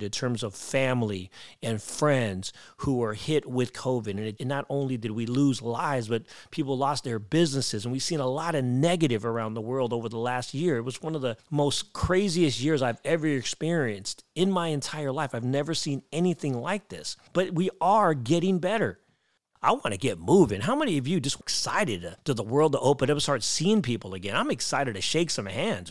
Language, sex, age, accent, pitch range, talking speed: English, male, 40-59, American, 115-165 Hz, 215 wpm